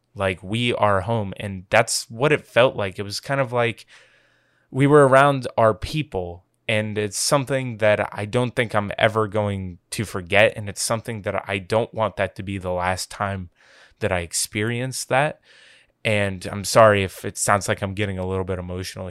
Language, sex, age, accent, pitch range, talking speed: English, male, 20-39, American, 95-110 Hz, 195 wpm